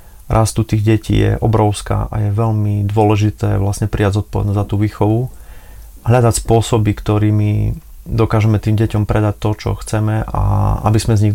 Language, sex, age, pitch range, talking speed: Slovak, male, 30-49, 100-110 Hz, 160 wpm